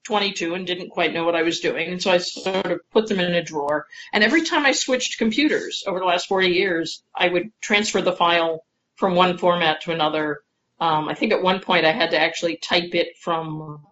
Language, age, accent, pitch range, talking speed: English, 40-59, American, 165-210 Hz, 230 wpm